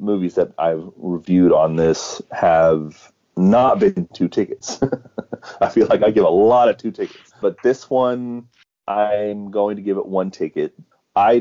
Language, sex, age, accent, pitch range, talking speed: English, male, 30-49, American, 85-105 Hz, 170 wpm